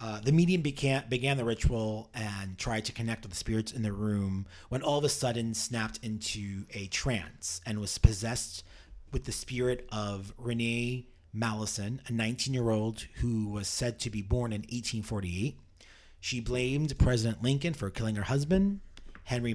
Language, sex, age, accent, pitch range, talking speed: English, male, 30-49, American, 95-120 Hz, 165 wpm